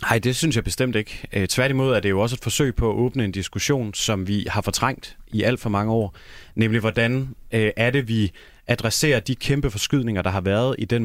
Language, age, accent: English, 30-49, Danish